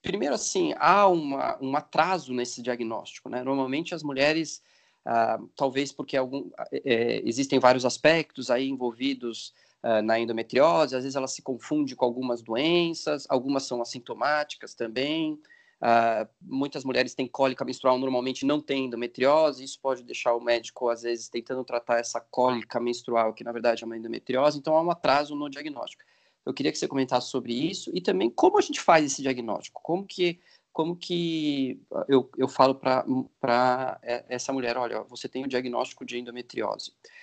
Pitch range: 120-160 Hz